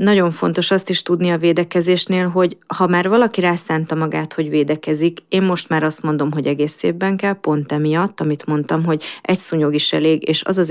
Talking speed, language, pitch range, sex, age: 195 wpm, Hungarian, 155-175 Hz, female, 30-49